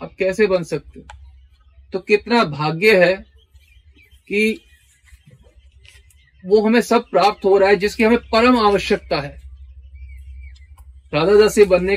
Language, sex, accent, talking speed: Hindi, male, native, 120 wpm